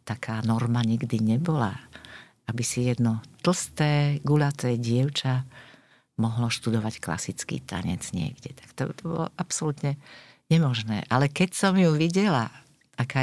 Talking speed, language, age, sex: 125 wpm, Slovak, 50-69, female